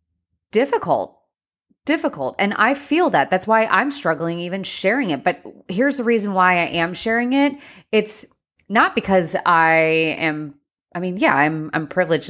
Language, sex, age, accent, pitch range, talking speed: English, female, 20-39, American, 150-190 Hz, 160 wpm